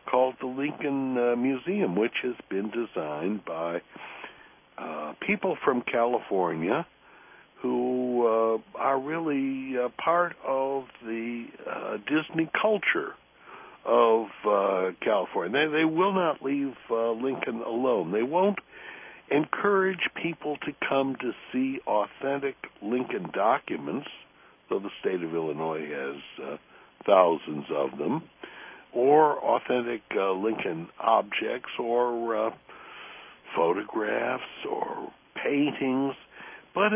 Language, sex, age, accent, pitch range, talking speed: English, male, 60-79, American, 100-140 Hz, 110 wpm